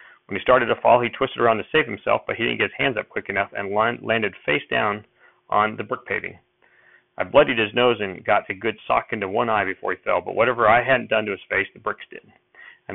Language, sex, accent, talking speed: English, male, American, 255 wpm